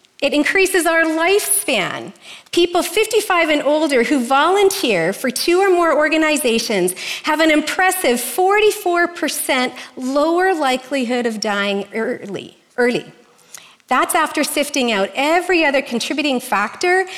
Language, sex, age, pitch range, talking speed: English, female, 40-59, 245-345 Hz, 115 wpm